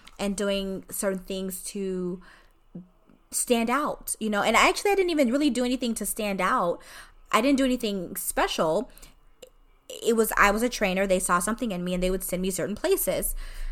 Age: 20-39